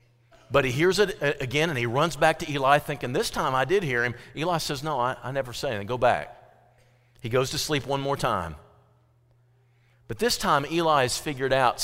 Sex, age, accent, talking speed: male, 40-59, American, 215 wpm